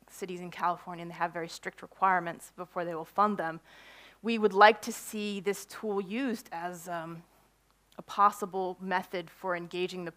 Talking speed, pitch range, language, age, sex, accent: 175 wpm, 165-200 Hz, English, 20-39, female, American